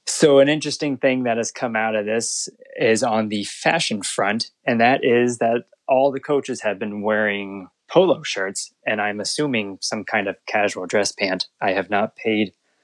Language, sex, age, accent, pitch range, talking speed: English, male, 20-39, American, 105-130 Hz, 185 wpm